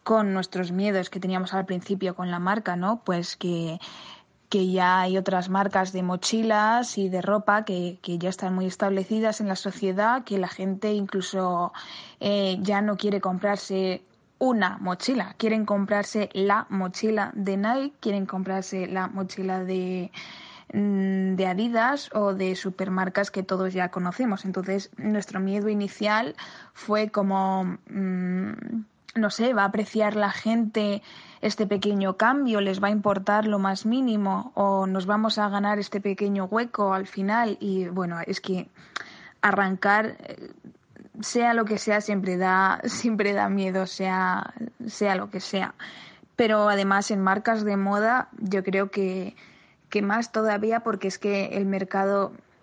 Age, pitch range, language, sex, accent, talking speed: 20-39, 190-215 Hz, Spanish, female, Spanish, 150 wpm